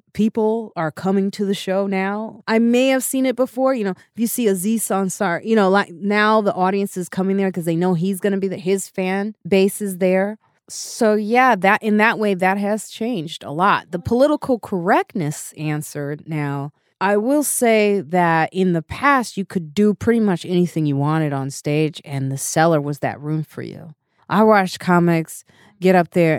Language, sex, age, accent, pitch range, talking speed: English, female, 20-39, American, 155-205 Hz, 205 wpm